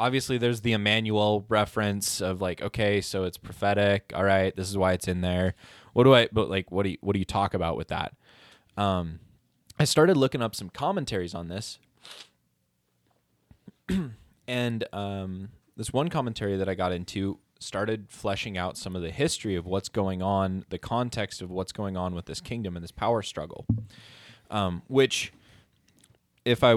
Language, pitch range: English, 90-110 Hz